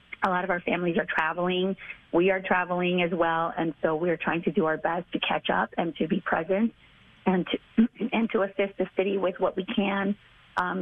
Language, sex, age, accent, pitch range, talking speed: English, female, 30-49, American, 165-190 Hz, 215 wpm